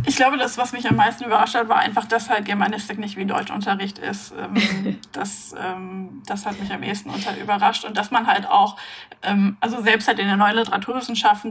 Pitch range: 205-245 Hz